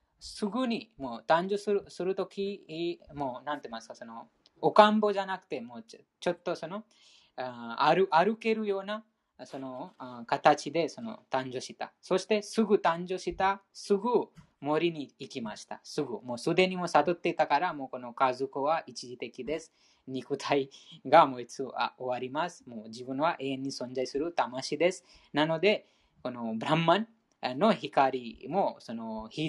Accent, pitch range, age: Indian, 130-190 Hz, 20-39